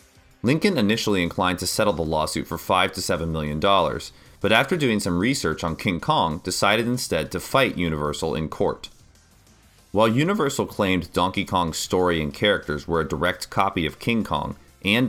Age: 30-49